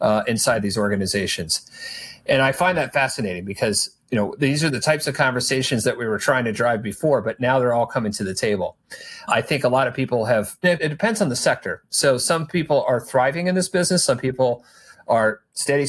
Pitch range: 115-140 Hz